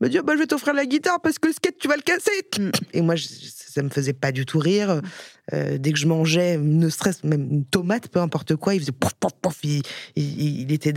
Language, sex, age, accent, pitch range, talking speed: French, female, 20-39, French, 150-200 Hz, 270 wpm